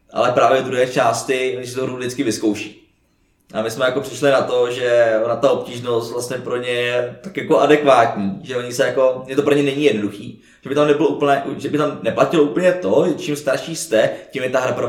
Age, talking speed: 20-39, 215 wpm